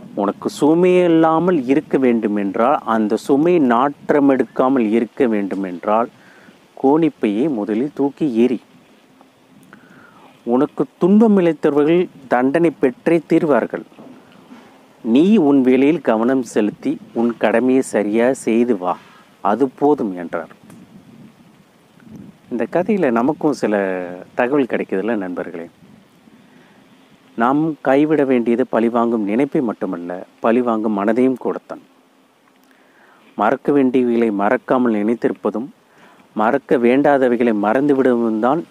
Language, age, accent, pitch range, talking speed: Tamil, 30-49, native, 115-170 Hz, 90 wpm